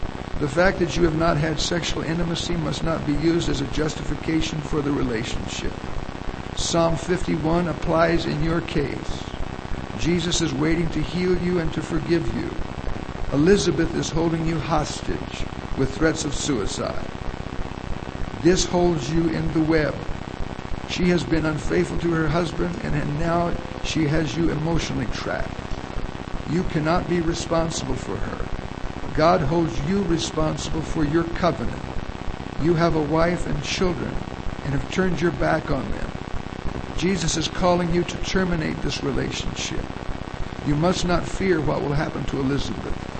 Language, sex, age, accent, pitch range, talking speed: English, male, 60-79, American, 145-170 Hz, 150 wpm